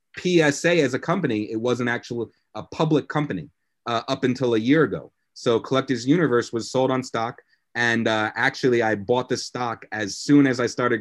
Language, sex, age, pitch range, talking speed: English, male, 30-49, 110-135 Hz, 190 wpm